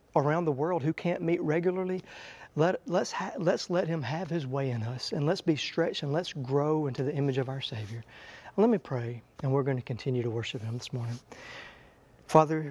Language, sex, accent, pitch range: English, male, American, 130-160 Hz